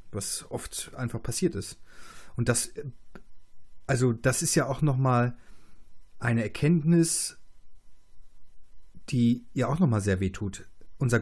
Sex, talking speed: male, 125 wpm